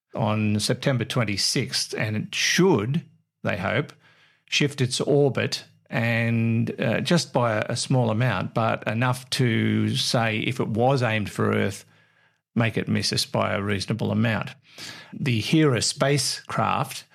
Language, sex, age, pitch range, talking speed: English, male, 50-69, 105-135 Hz, 135 wpm